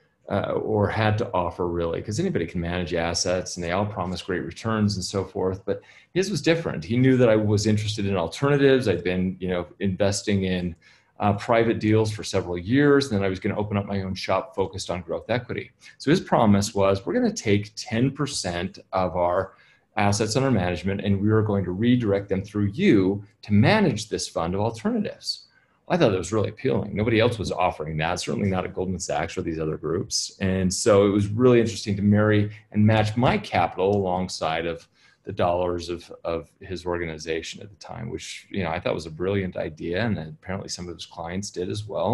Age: 30-49